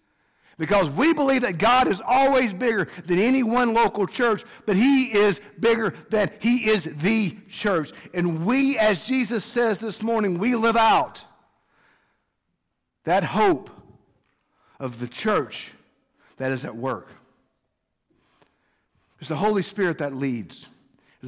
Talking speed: 135 wpm